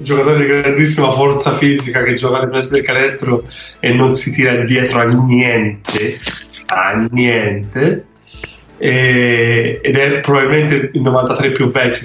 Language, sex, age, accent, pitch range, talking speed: Italian, male, 20-39, native, 115-145 Hz, 140 wpm